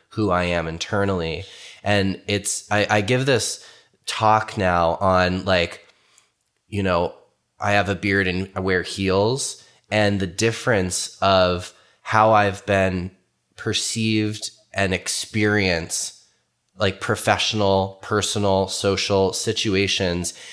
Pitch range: 95-110 Hz